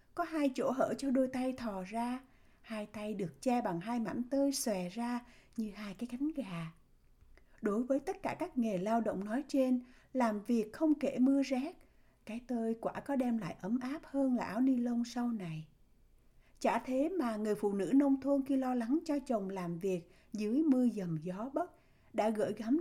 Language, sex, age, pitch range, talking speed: Vietnamese, female, 60-79, 205-275 Hz, 205 wpm